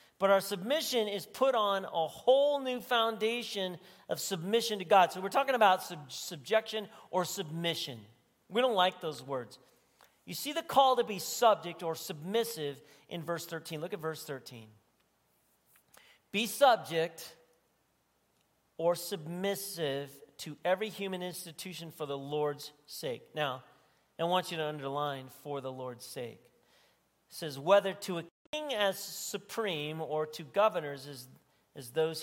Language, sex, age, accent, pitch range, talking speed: English, male, 40-59, American, 145-195 Hz, 145 wpm